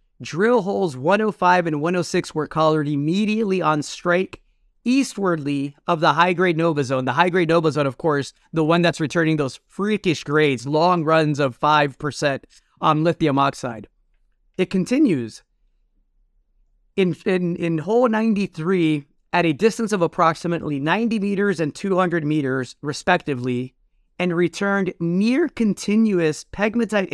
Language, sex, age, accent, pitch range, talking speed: English, male, 30-49, American, 155-200 Hz, 130 wpm